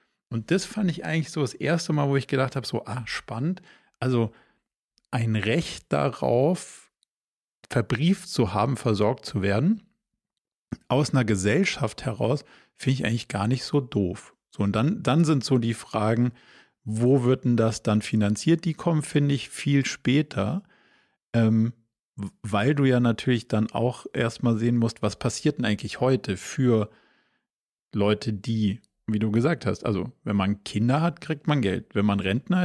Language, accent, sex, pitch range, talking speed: German, German, male, 110-140 Hz, 165 wpm